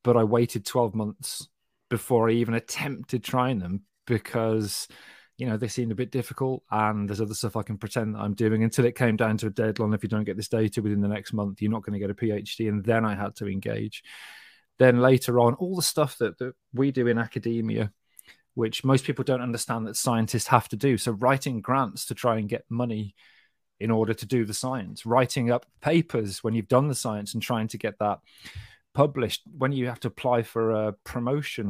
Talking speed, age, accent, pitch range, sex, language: 220 wpm, 20-39, British, 110-125 Hz, male, English